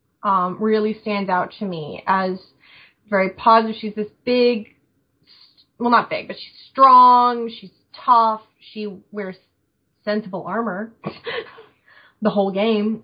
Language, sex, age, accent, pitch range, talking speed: English, female, 20-39, American, 205-245 Hz, 125 wpm